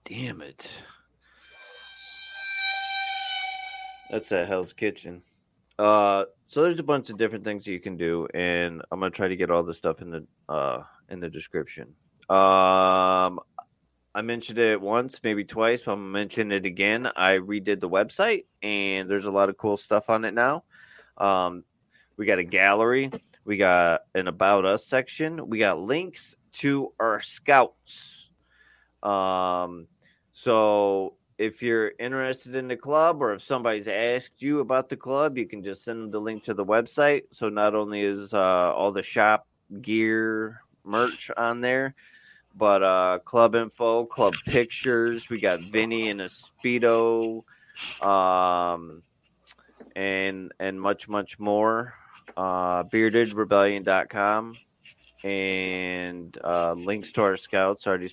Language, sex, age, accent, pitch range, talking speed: English, male, 20-39, American, 95-120 Hz, 145 wpm